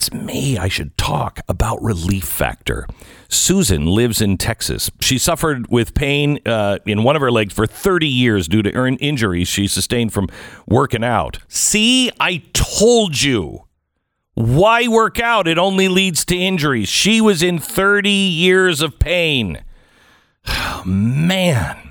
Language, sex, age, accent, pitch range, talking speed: English, male, 50-69, American, 105-150 Hz, 150 wpm